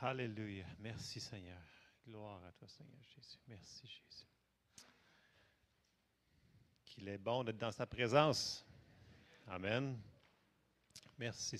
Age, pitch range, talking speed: 40-59, 115-160 Hz, 100 wpm